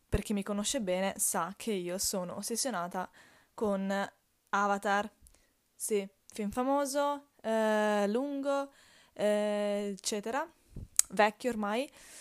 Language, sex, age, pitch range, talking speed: Italian, female, 20-39, 195-225 Hz, 105 wpm